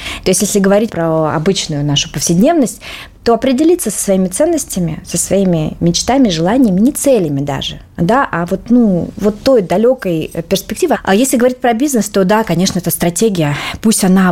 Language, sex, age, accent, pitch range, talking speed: Russian, female, 20-39, native, 170-220 Hz, 170 wpm